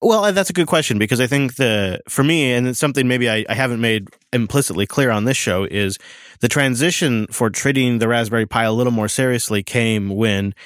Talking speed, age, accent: 215 wpm, 20-39, American